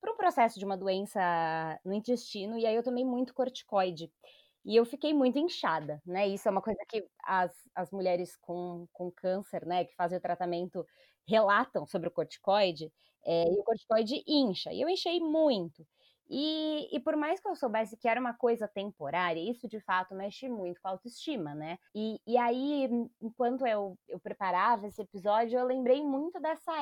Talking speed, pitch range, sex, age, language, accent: 185 wpm, 190-280 Hz, female, 20-39, Portuguese, Brazilian